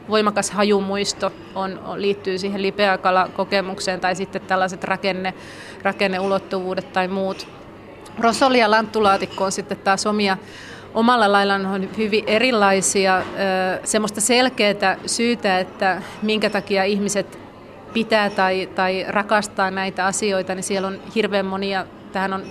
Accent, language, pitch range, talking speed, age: native, Finnish, 185-205 Hz, 120 wpm, 30-49